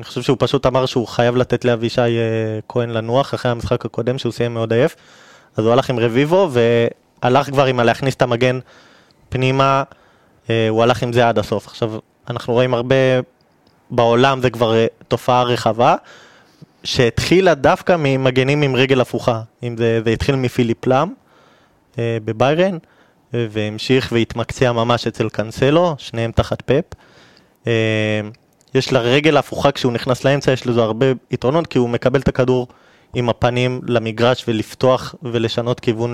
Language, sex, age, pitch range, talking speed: Hebrew, male, 20-39, 115-135 Hz, 145 wpm